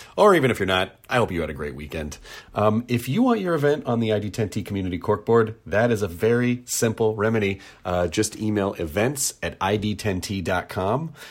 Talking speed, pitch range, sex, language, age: 185 wpm, 95-135 Hz, male, English, 40-59